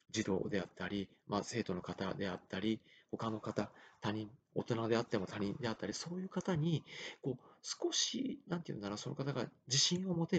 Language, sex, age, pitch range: Japanese, male, 40-59, 110-145 Hz